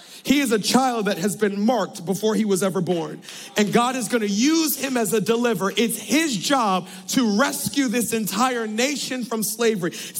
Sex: male